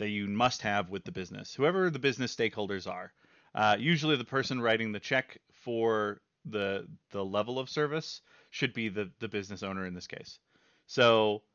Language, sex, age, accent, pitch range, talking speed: English, male, 30-49, American, 105-130 Hz, 180 wpm